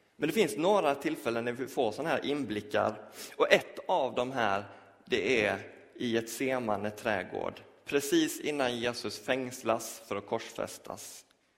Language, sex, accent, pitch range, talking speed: Swedish, male, native, 105-160 Hz, 150 wpm